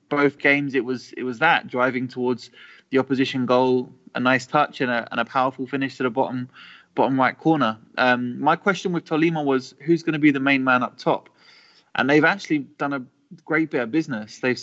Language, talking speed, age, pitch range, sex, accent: English, 215 wpm, 20-39, 125-145 Hz, male, British